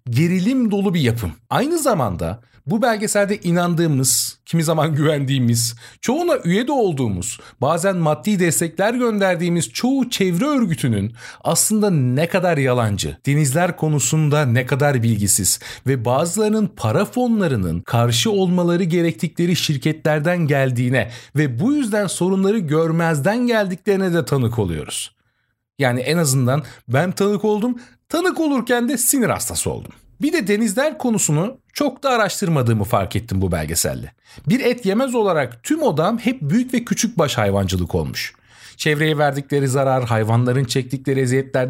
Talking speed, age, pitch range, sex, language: 130 wpm, 40-59, 130-210 Hz, male, Turkish